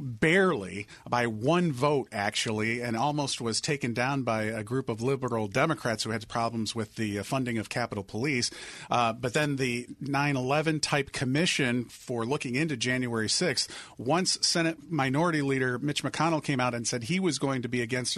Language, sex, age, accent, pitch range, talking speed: English, male, 40-59, American, 120-145 Hz, 175 wpm